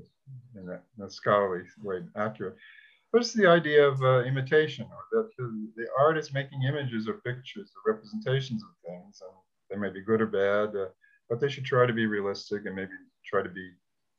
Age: 50-69